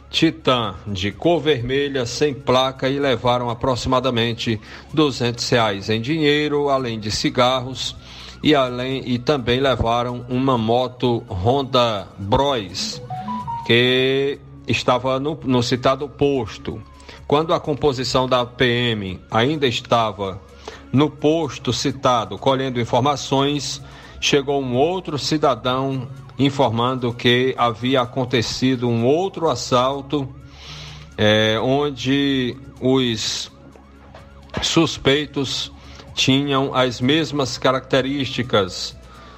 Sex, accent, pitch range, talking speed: male, Brazilian, 115-140 Hz, 90 wpm